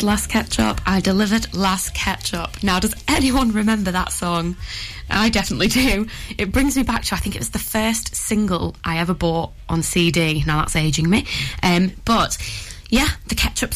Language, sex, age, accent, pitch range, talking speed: English, female, 20-39, British, 175-215 Hz, 180 wpm